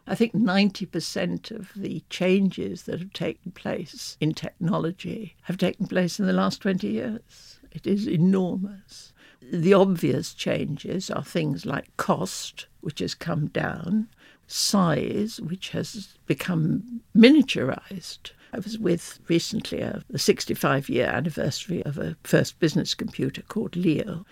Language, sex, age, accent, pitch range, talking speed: English, female, 60-79, British, 170-215 Hz, 135 wpm